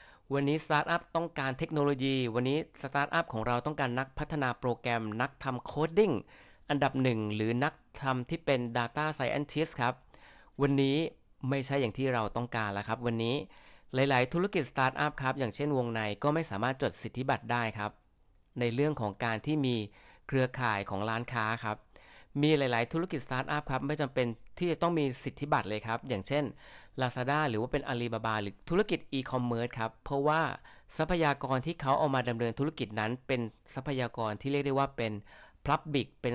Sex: male